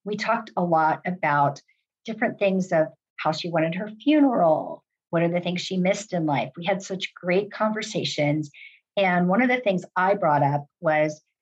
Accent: American